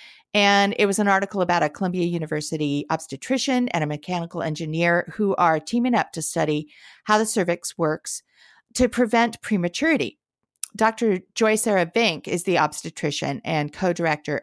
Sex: female